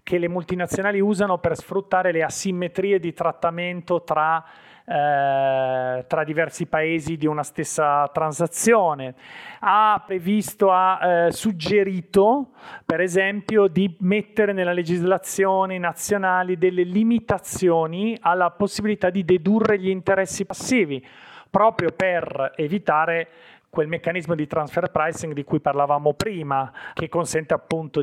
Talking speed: 115 wpm